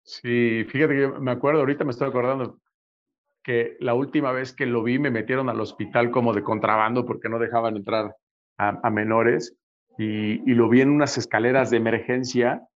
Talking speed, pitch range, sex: 185 wpm, 115-130 Hz, male